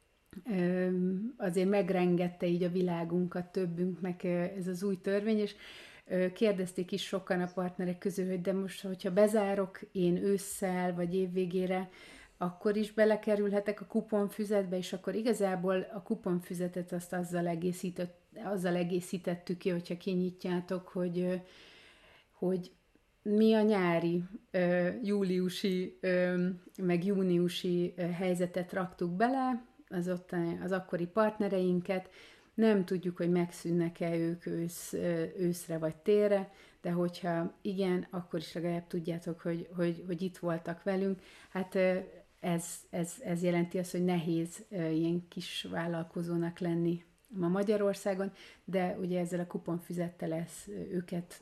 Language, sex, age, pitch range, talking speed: Hungarian, female, 30-49, 175-195 Hz, 120 wpm